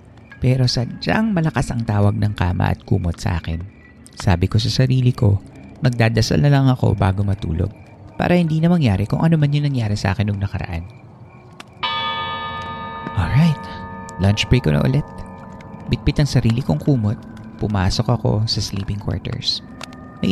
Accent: native